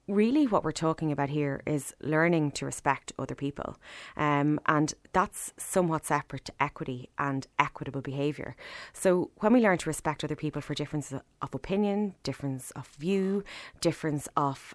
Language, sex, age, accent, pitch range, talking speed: English, female, 20-39, Irish, 145-175 Hz, 160 wpm